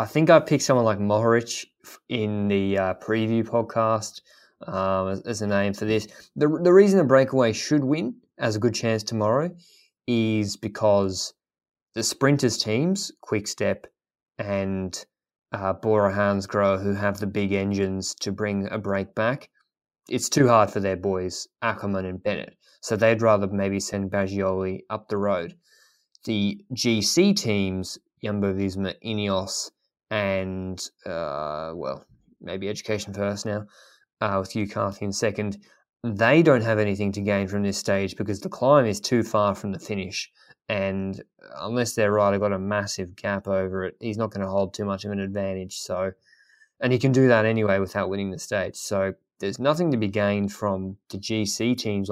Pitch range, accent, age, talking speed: 100-115 Hz, Australian, 20-39, 170 wpm